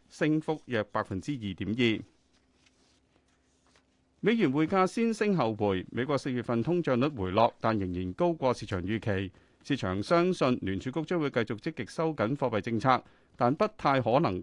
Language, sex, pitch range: Chinese, male, 100-145 Hz